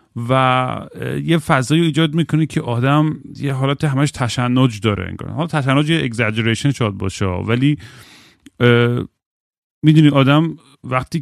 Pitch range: 110-135 Hz